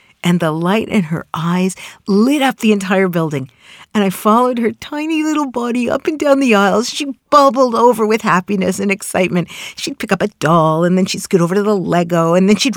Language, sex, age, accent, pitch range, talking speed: English, female, 50-69, American, 175-240 Hz, 215 wpm